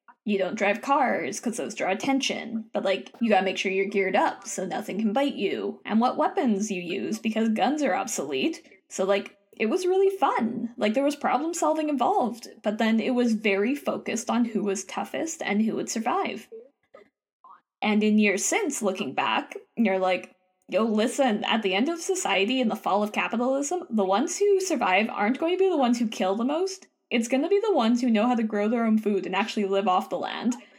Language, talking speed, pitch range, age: English, 210 wpm, 195-255 Hz, 20-39